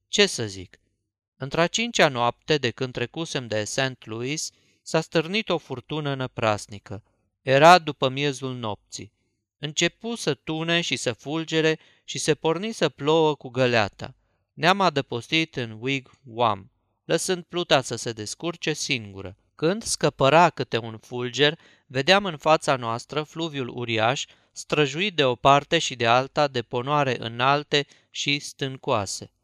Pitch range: 120-160 Hz